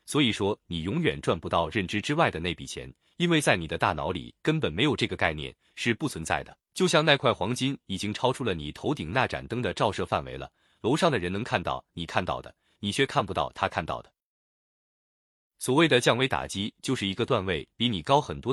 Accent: native